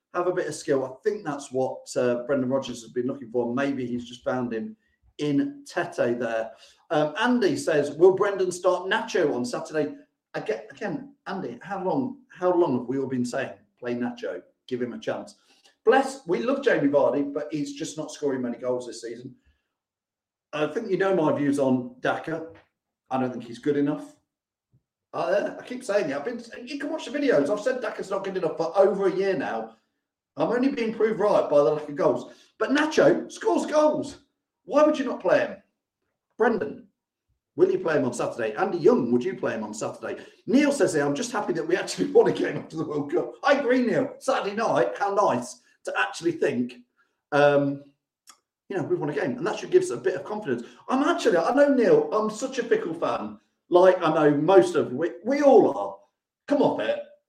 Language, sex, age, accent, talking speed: English, male, 40-59, British, 210 wpm